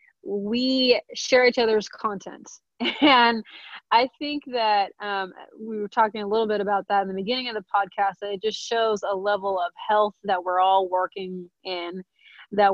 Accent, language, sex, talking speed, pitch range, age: American, English, female, 180 wpm, 195-235 Hz, 30-49